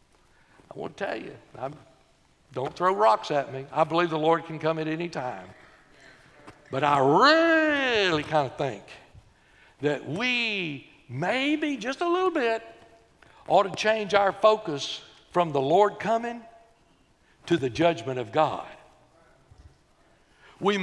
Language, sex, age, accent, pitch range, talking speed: English, male, 60-79, American, 150-215 Hz, 135 wpm